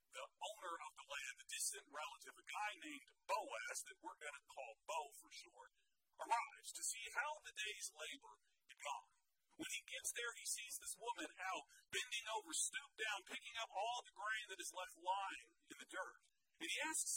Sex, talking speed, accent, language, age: male, 200 wpm, American, English, 40-59